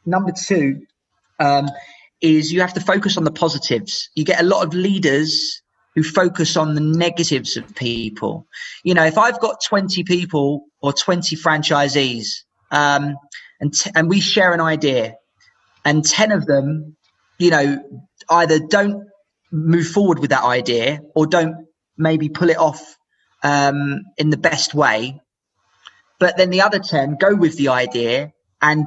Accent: British